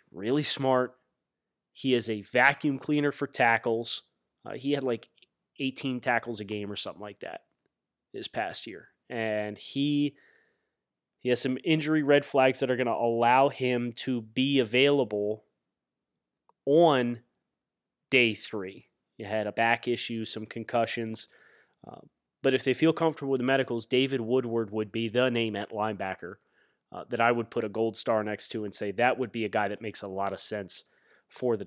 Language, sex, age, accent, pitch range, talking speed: English, male, 20-39, American, 110-135 Hz, 175 wpm